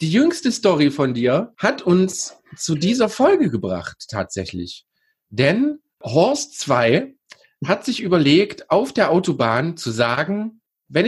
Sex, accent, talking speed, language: male, German, 130 wpm, German